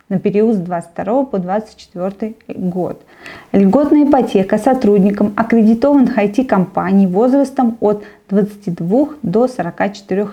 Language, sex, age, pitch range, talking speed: Russian, female, 20-39, 190-225 Hz, 110 wpm